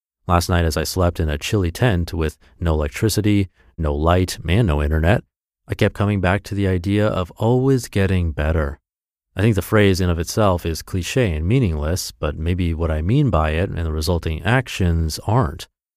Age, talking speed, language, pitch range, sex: 30-49, 190 wpm, English, 85-120 Hz, male